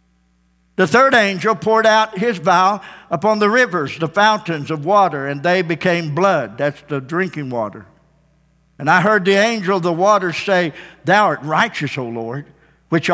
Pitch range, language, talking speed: 160-220 Hz, English, 170 wpm